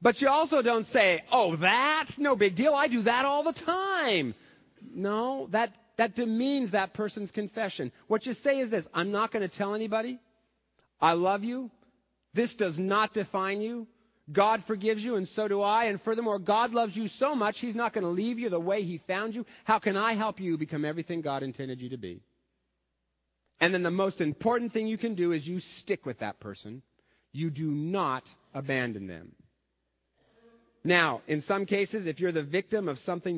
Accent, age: American, 40-59